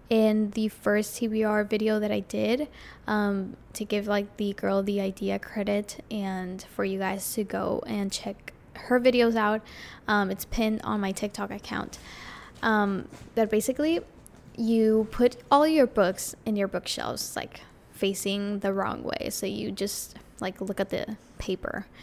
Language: English